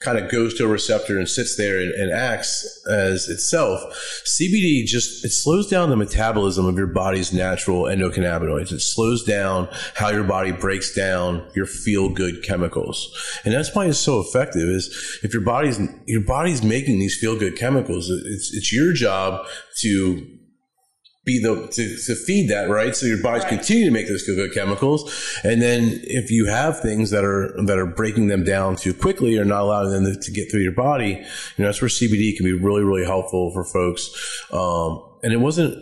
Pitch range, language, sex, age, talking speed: 95-115 Hz, English, male, 30-49, 190 wpm